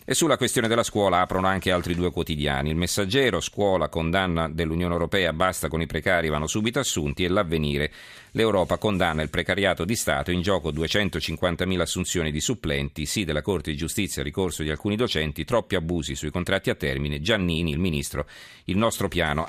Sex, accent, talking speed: male, native, 180 wpm